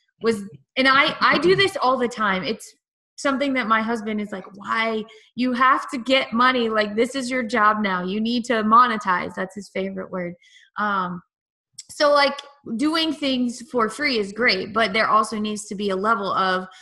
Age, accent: 20-39, American